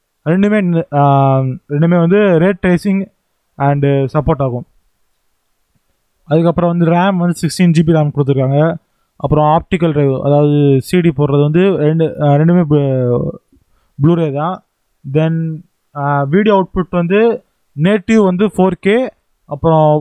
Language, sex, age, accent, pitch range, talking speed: Tamil, male, 20-39, native, 155-195 Hz, 110 wpm